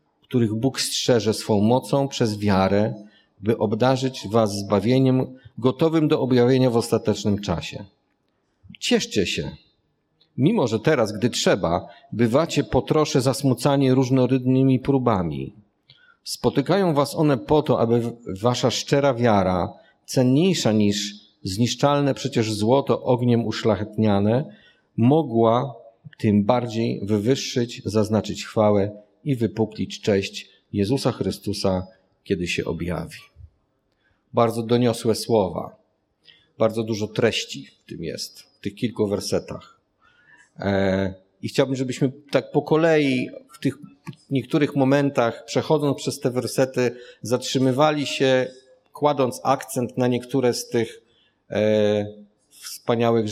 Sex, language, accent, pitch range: male, Polish, native, 105-135 Hz